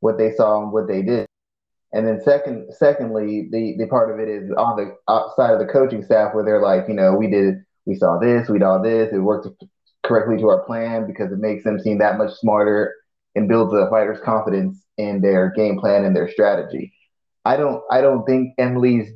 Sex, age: male, 30-49